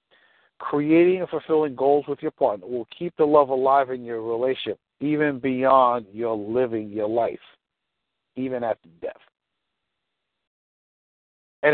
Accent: American